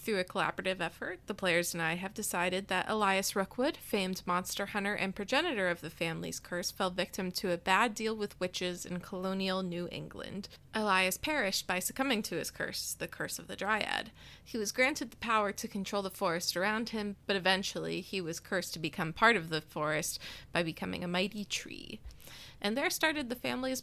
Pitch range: 180-220 Hz